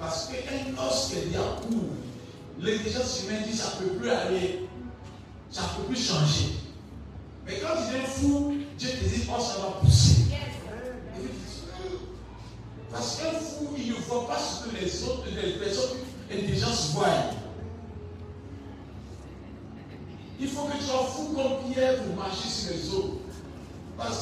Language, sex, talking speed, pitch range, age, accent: French, male, 150 wpm, 185-300 Hz, 50-69, French